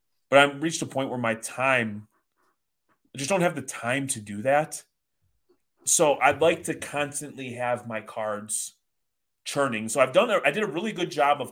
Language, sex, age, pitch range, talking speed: English, male, 30-49, 115-140 Hz, 175 wpm